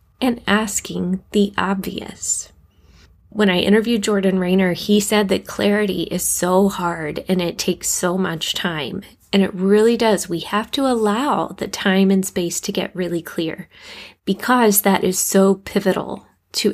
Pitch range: 180-220 Hz